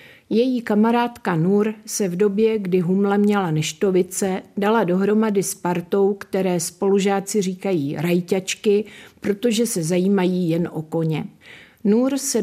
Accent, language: native, Czech